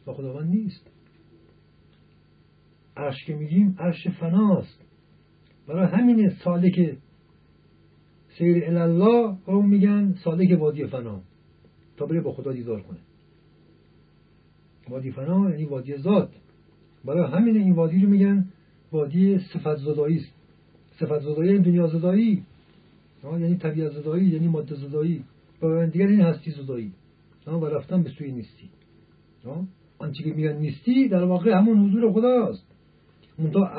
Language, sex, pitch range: Persian, male, 150-195 Hz